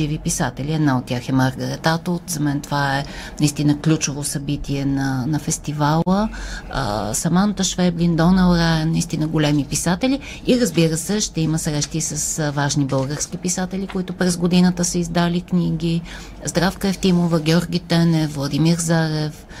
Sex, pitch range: female, 155-185 Hz